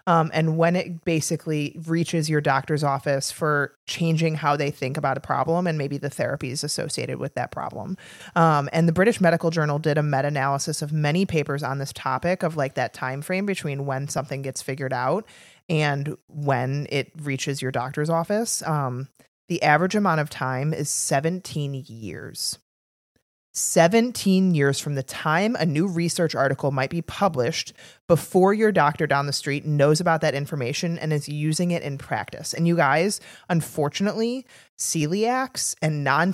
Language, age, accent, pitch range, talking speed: English, 30-49, American, 140-170 Hz, 170 wpm